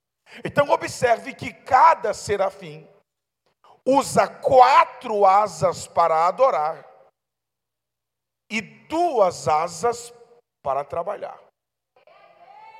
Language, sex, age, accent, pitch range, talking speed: Portuguese, male, 50-69, Brazilian, 200-300 Hz, 70 wpm